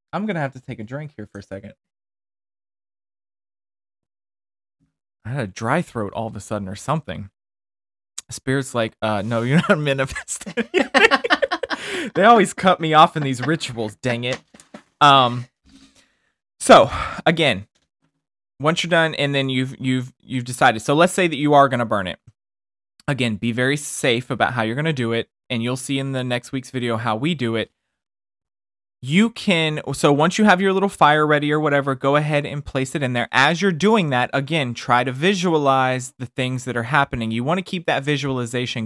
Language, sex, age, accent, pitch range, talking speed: English, male, 20-39, American, 115-150 Hz, 190 wpm